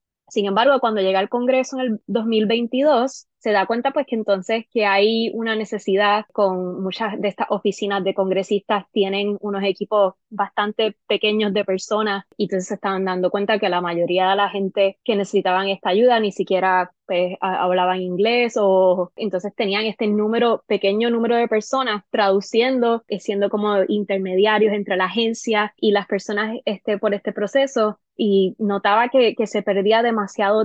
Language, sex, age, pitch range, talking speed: English, female, 20-39, 195-220 Hz, 165 wpm